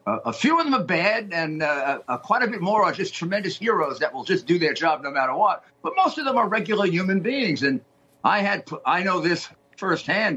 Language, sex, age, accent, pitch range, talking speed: English, male, 50-69, American, 140-200 Hz, 245 wpm